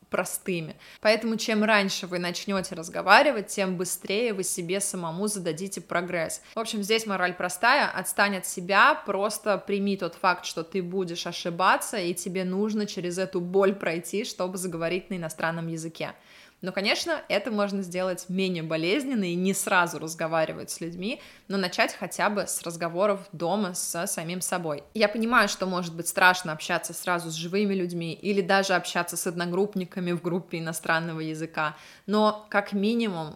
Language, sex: Russian, female